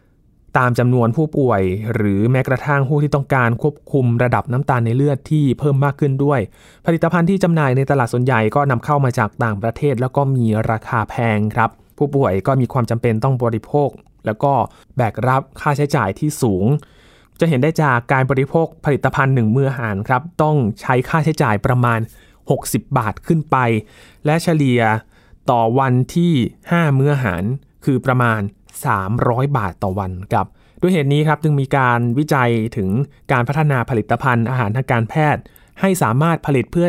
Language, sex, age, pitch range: Thai, male, 20-39, 115-145 Hz